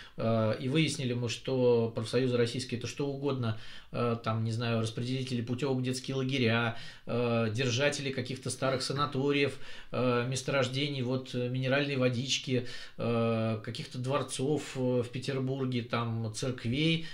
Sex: male